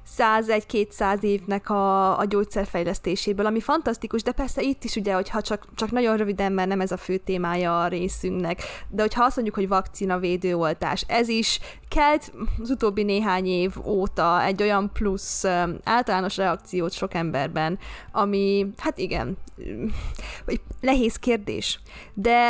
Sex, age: female, 20-39